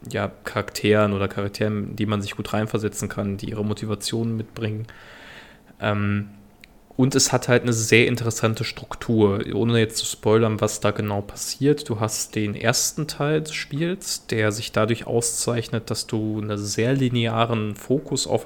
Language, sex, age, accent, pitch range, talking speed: German, male, 20-39, German, 105-120 Hz, 155 wpm